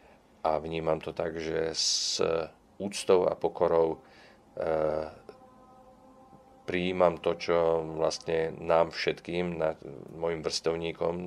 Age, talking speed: 40-59, 95 wpm